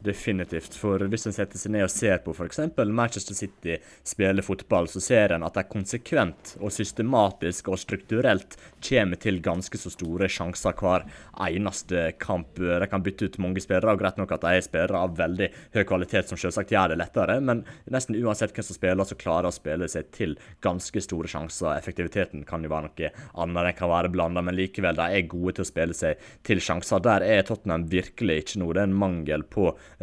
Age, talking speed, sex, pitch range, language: 20-39, 205 wpm, male, 85-100 Hz, English